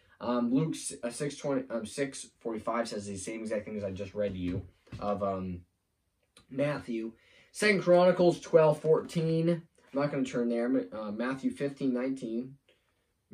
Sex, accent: male, American